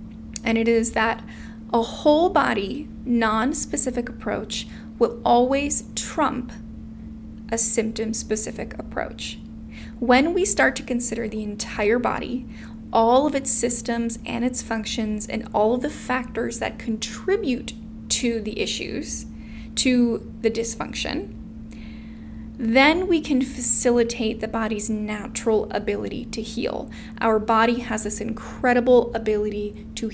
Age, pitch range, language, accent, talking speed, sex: 10-29, 220-245 Hz, English, American, 120 wpm, female